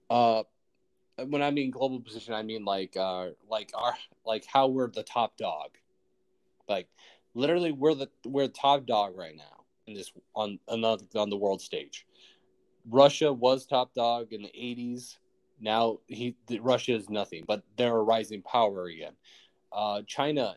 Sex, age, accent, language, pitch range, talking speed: male, 20-39, American, English, 105-125 Hz, 165 wpm